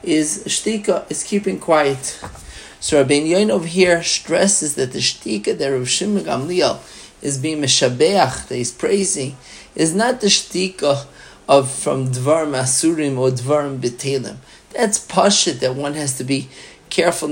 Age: 40-59